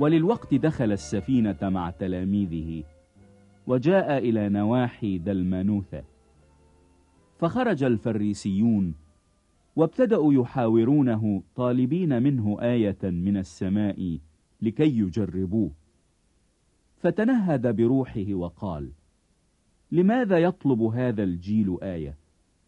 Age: 50-69